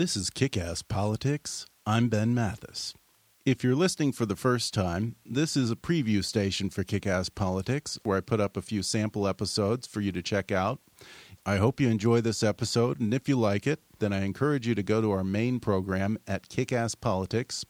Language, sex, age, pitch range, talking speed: English, male, 40-59, 100-125 Hz, 200 wpm